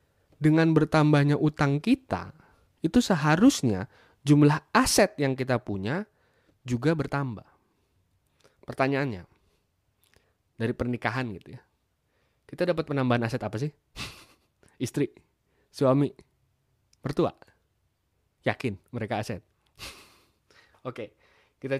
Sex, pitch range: male, 110-155 Hz